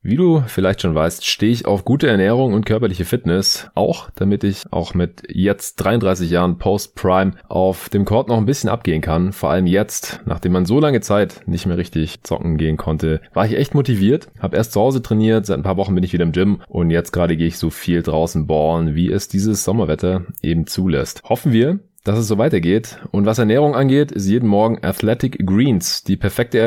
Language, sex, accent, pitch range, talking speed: German, male, German, 90-115 Hz, 215 wpm